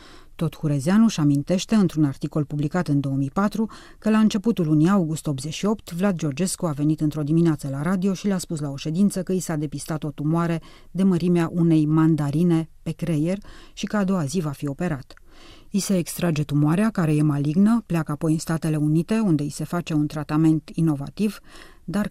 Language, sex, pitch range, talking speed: Romanian, female, 150-180 Hz, 185 wpm